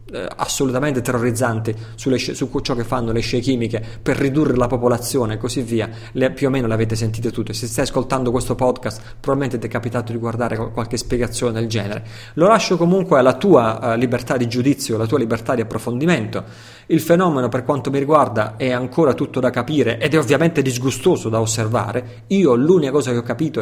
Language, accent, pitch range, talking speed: Italian, native, 115-140 Hz, 195 wpm